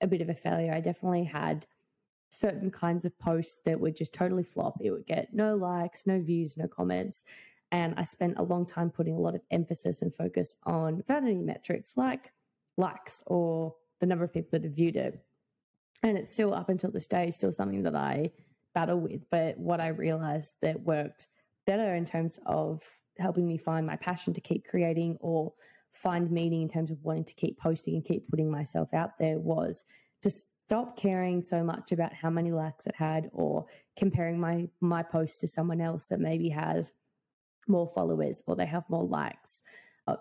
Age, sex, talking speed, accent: 20-39, female, 195 wpm, Australian